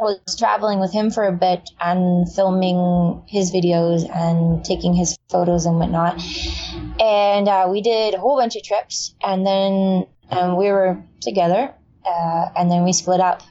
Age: 20-39